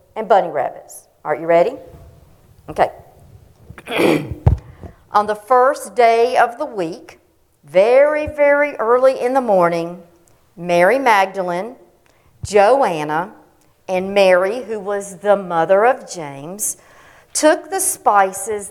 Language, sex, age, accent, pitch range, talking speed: English, female, 50-69, American, 180-255 Hz, 110 wpm